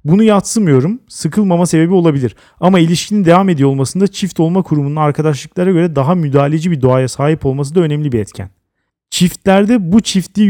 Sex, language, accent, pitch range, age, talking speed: male, Turkish, native, 130-175 Hz, 40-59, 160 wpm